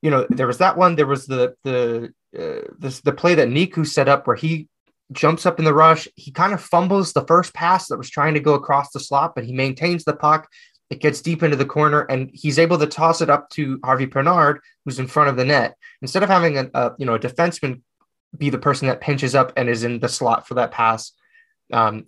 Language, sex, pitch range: English, male, 135-170 Hz